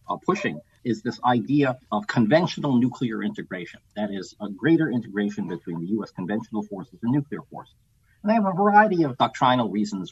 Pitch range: 105-135 Hz